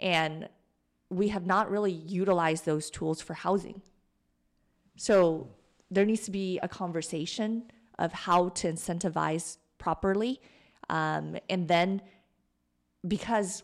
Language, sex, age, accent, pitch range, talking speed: English, female, 30-49, American, 165-200 Hz, 115 wpm